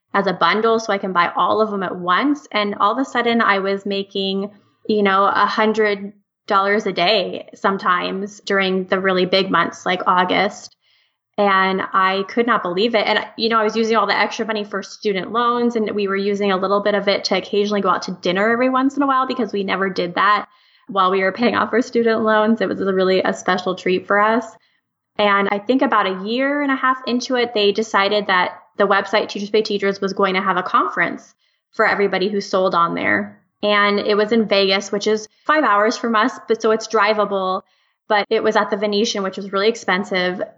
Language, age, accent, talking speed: English, 20-39, American, 225 wpm